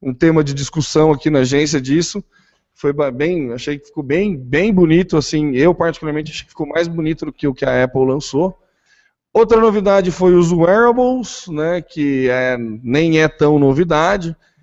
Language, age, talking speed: Portuguese, 20-39, 175 wpm